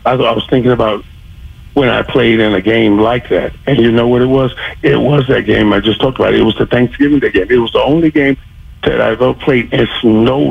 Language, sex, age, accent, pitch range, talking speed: English, male, 50-69, American, 110-140 Hz, 245 wpm